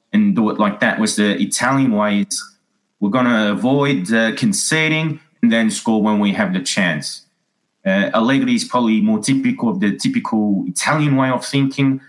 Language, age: English, 30-49